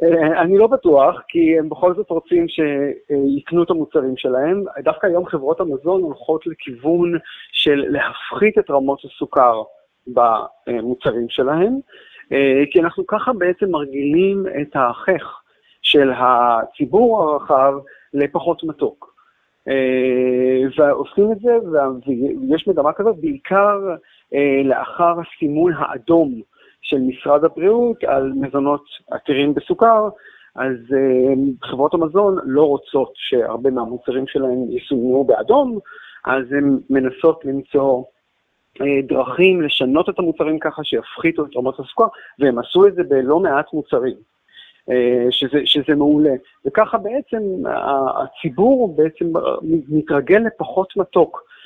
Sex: male